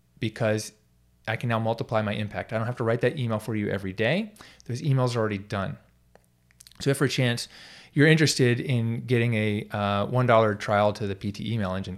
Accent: American